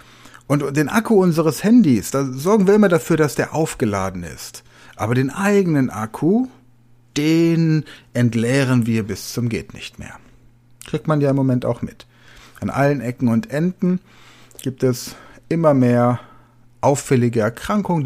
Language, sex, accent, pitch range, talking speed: German, male, German, 110-135 Hz, 145 wpm